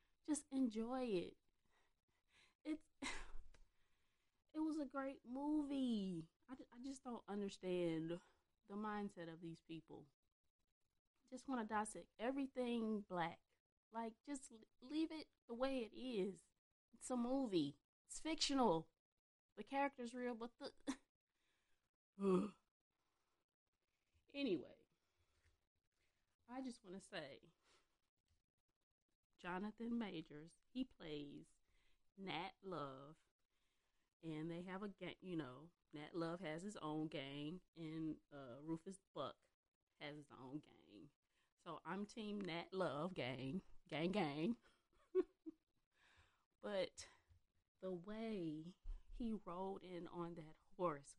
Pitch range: 160-245 Hz